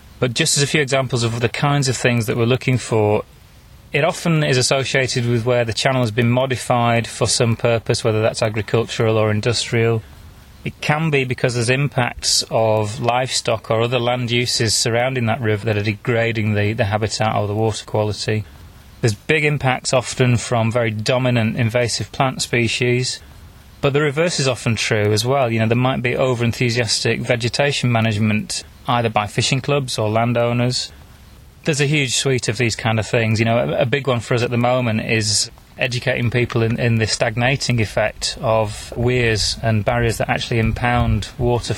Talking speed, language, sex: 180 wpm, English, male